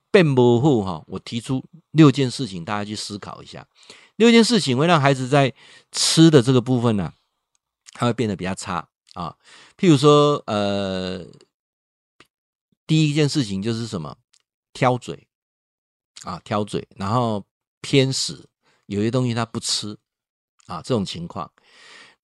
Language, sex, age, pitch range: Chinese, male, 50-69, 105-145 Hz